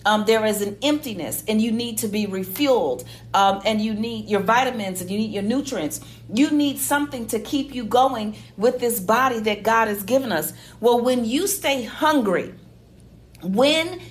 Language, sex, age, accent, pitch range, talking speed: English, female, 40-59, American, 210-270 Hz, 185 wpm